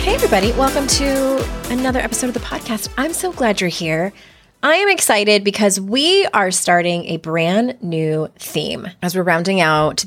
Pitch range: 165-245 Hz